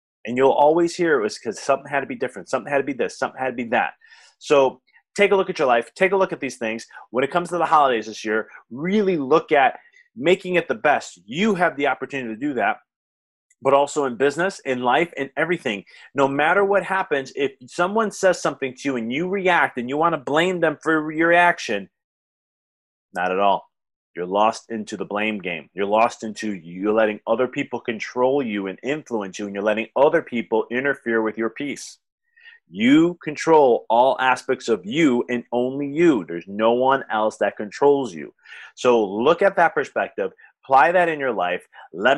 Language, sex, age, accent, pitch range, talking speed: English, male, 30-49, American, 115-170 Hz, 205 wpm